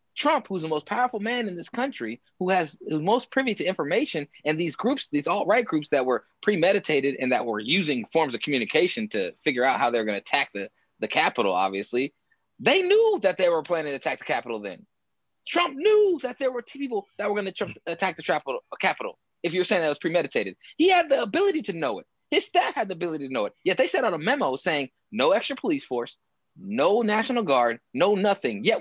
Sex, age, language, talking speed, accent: male, 20-39, English, 225 wpm, American